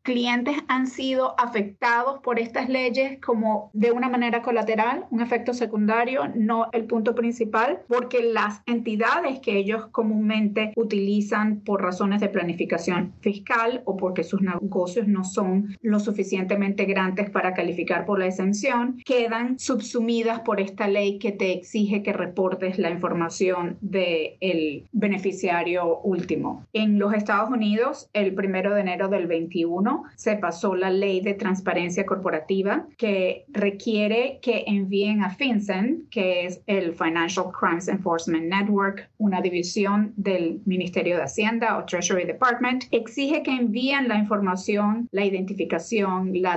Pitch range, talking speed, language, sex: 185-230 Hz, 140 wpm, English, female